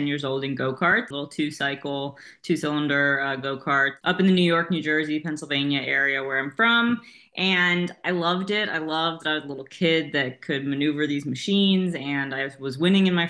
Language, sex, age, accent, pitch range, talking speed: English, female, 20-39, American, 145-180 Hz, 200 wpm